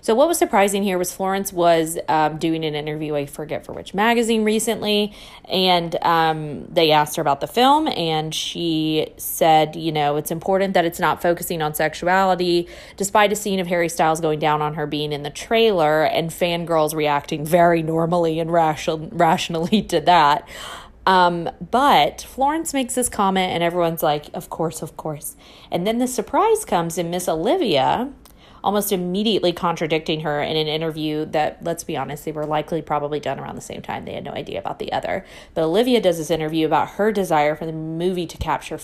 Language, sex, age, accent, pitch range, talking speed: English, female, 20-39, American, 155-185 Hz, 190 wpm